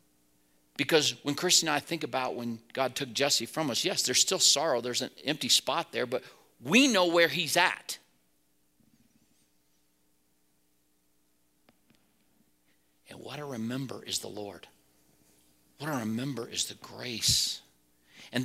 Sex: male